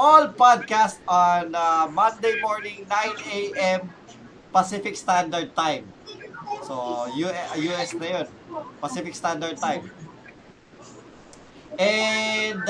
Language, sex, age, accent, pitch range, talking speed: Filipino, male, 20-39, native, 165-215 Hz, 85 wpm